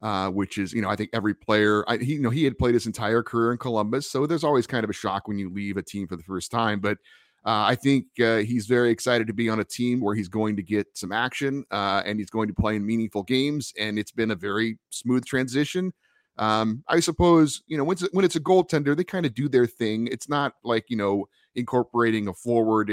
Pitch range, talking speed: 105-135 Hz, 250 wpm